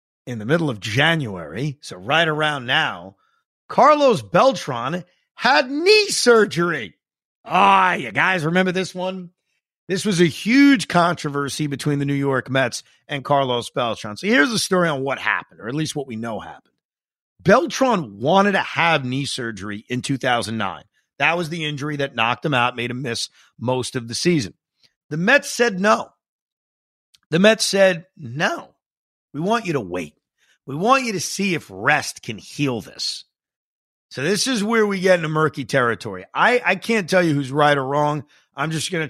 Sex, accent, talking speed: male, American, 175 wpm